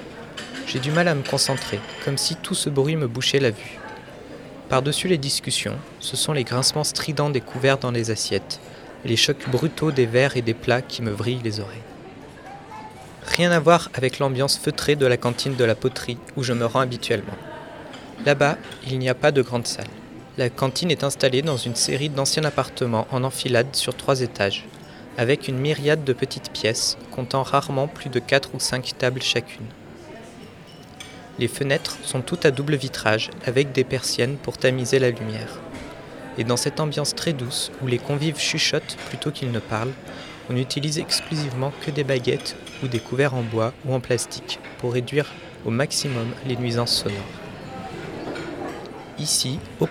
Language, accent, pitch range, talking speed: French, French, 120-145 Hz, 175 wpm